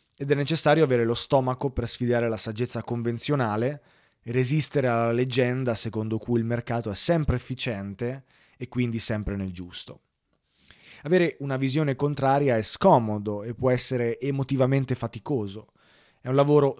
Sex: male